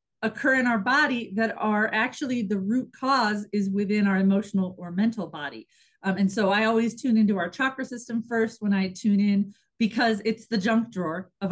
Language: English